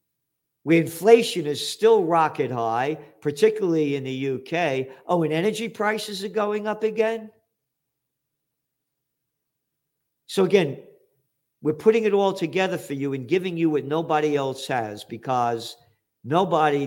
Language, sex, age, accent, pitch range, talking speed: English, male, 50-69, American, 130-165 Hz, 130 wpm